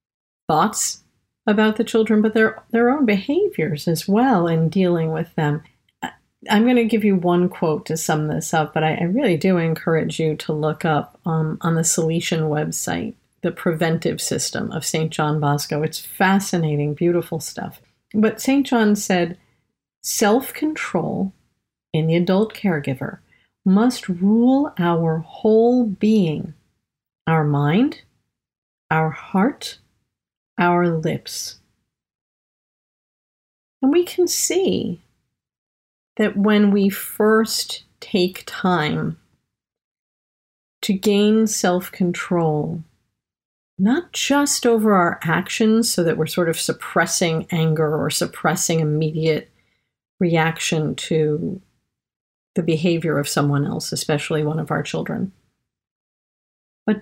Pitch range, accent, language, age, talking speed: 160-215 Hz, American, English, 50-69, 120 wpm